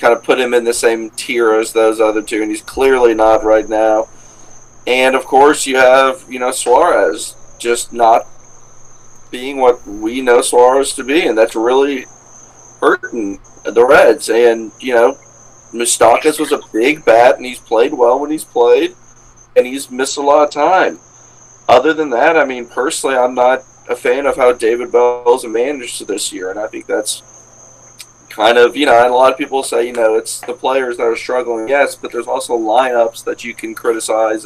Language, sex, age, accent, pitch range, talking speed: English, male, 40-59, American, 120-155 Hz, 195 wpm